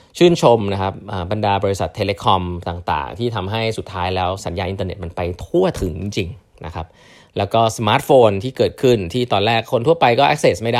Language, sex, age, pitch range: Thai, male, 20-39, 90-115 Hz